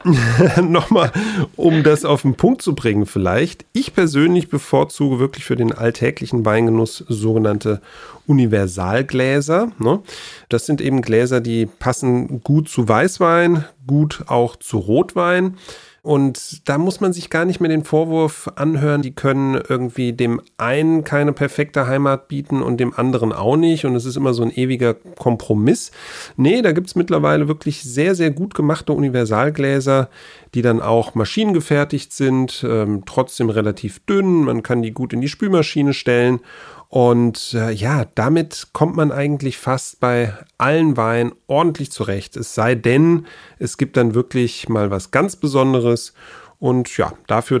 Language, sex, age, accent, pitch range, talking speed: German, male, 40-59, German, 115-155 Hz, 150 wpm